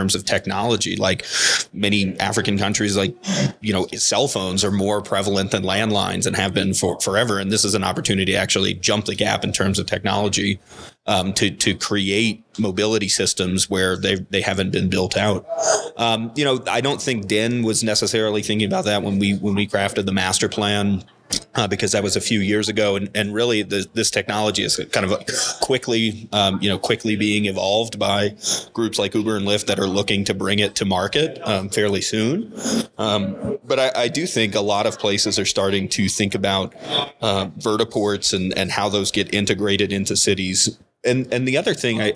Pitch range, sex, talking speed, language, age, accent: 95-110 Hz, male, 200 wpm, English, 30-49, American